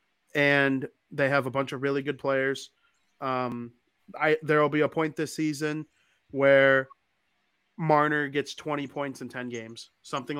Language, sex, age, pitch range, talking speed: English, male, 30-49, 125-145 Hz, 155 wpm